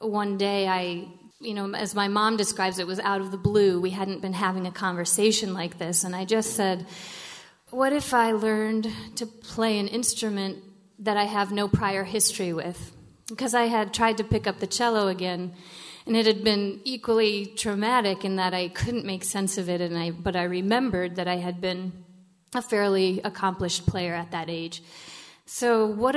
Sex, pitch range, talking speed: female, 180-210 Hz, 195 wpm